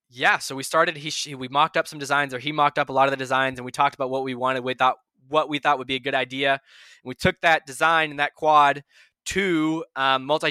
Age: 20-39